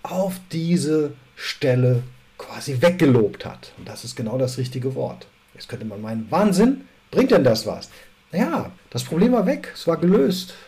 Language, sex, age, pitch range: German, male, 50-69, 130-170 Hz